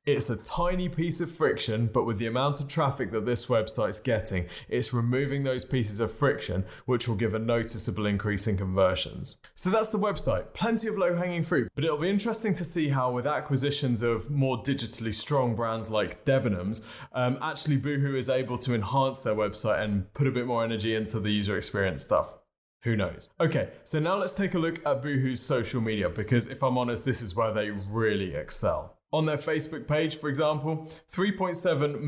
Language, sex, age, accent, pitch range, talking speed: English, male, 20-39, British, 110-145 Hz, 195 wpm